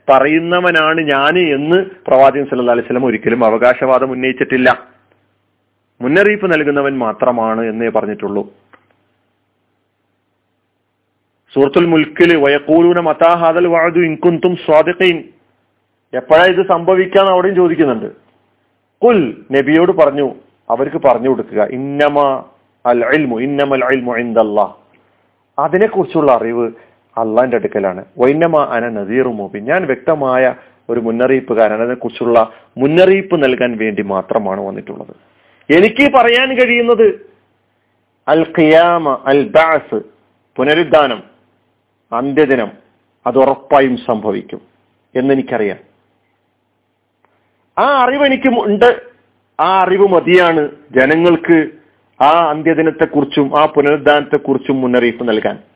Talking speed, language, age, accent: 80 wpm, Malayalam, 40-59, native